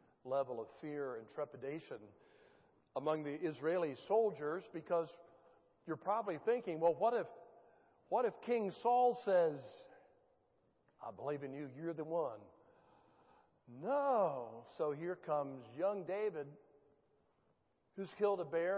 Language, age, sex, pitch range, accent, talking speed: English, 60-79, male, 155-205 Hz, American, 120 wpm